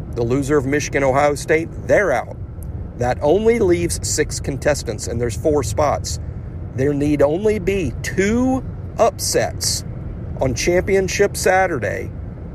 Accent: American